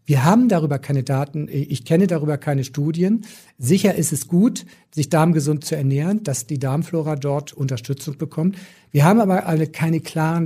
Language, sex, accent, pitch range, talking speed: German, male, German, 140-185 Hz, 165 wpm